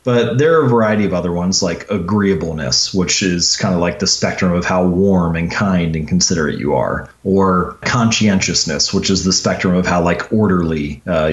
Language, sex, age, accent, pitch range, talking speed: English, male, 30-49, American, 90-115 Hz, 195 wpm